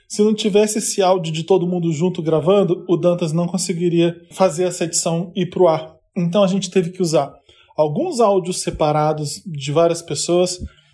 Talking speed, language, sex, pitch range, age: 175 wpm, Portuguese, male, 165-200 Hz, 20-39